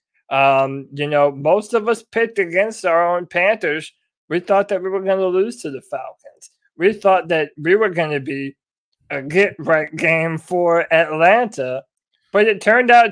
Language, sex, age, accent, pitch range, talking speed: English, male, 20-39, American, 150-185 Hz, 185 wpm